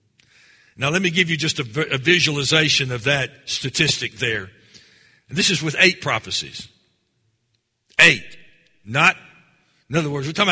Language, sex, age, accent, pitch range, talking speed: English, male, 60-79, American, 130-185 Hz, 150 wpm